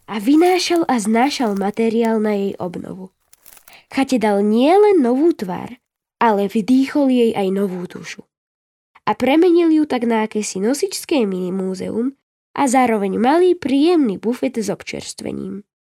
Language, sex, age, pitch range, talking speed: Slovak, female, 10-29, 215-275 Hz, 130 wpm